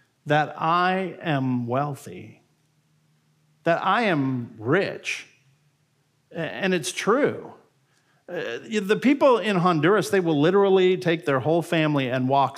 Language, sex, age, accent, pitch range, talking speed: English, male, 50-69, American, 125-165 Hz, 120 wpm